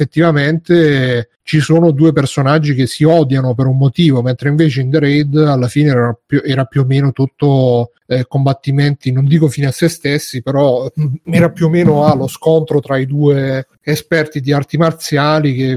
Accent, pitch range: native, 130-155 Hz